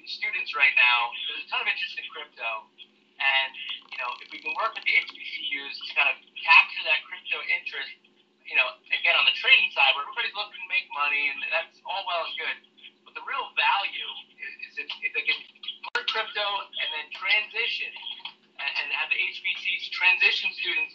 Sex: male